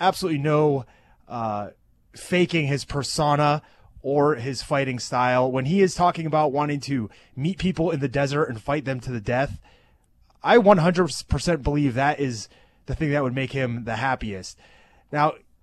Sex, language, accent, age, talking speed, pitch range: male, English, American, 30-49, 160 wpm, 130-160 Hz